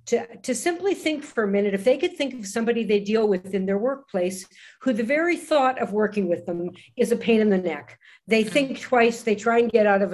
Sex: female